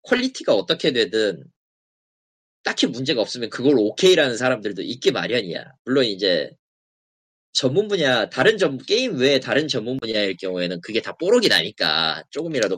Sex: male